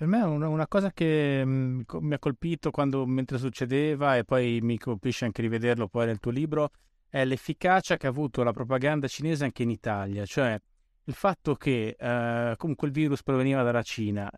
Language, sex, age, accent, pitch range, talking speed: Italian, male, 30-49, native, 120-150 Hz, 180 wpm